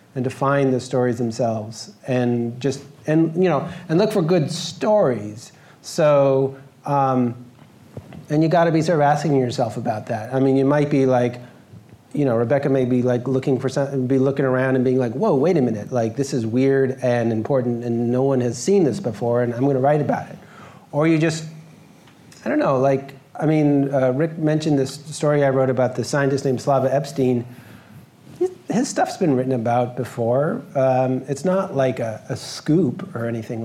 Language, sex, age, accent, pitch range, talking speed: English, male, 30-49, American, 130-165 Hz, 195 wpm